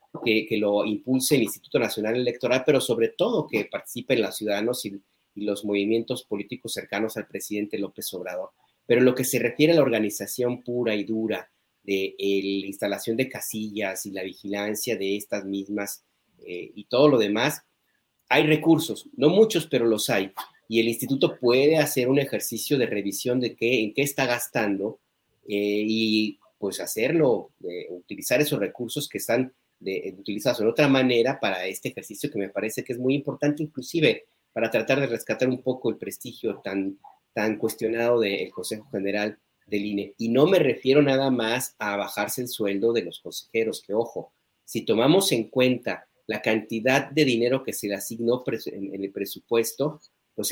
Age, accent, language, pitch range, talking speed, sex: 40-59, Mexican, Spanish, 105-130 Hz, 180 wpm, male